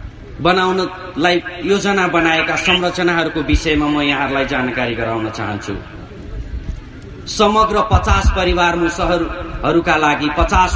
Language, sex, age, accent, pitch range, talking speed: English, male, 40-59, Indian, 125-185 Hz, 95 wpm